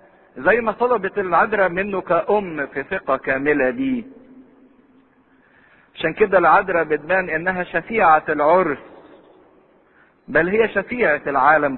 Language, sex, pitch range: English, male, 155-245 Hz